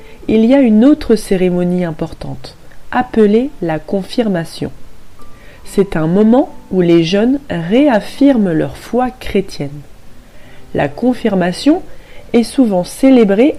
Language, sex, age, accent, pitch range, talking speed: French, female, 40-59, French, 180-255 Hz, 110 wpm